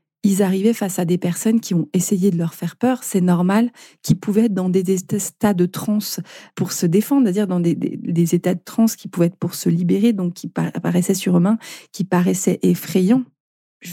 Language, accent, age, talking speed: French, French, 40-59, 215 wpm